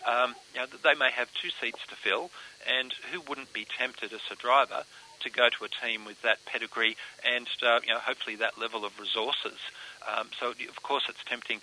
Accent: Australian